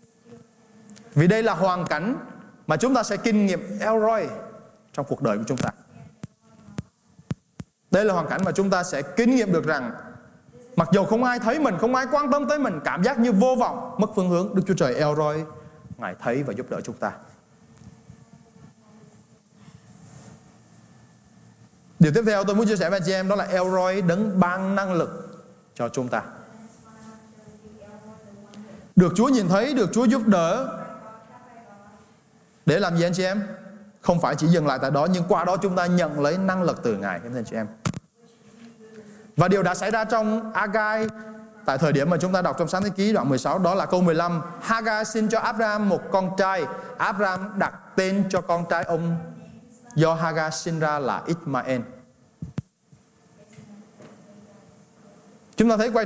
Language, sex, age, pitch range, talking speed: Vietnamese, male, 20-39, 175-220 Hz, 175 wpm